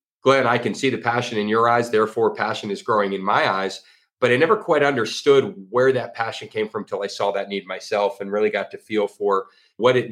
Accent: American